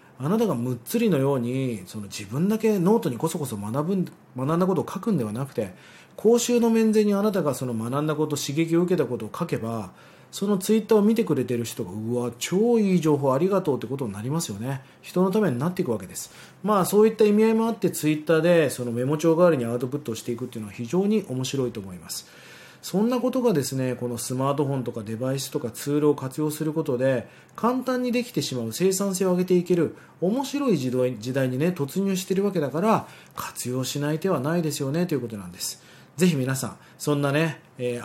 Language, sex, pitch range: Japanese, male, 125-190 Hz